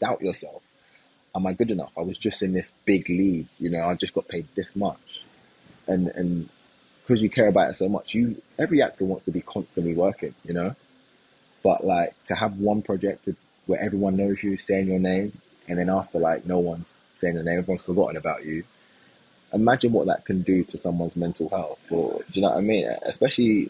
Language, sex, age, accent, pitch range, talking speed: English, male, 20-39, British, 85-100 Hz, 210 wpm